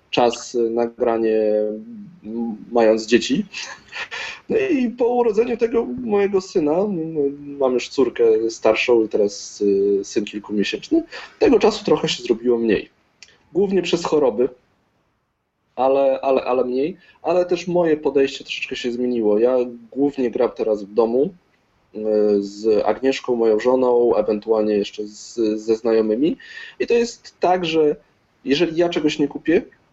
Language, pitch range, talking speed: Polish, 115-185 Hz, 125 wpm